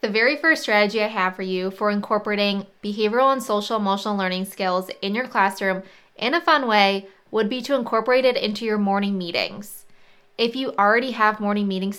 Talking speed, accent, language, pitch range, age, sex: 185 wpm, American, English, 195-235 Hz, 20-39, female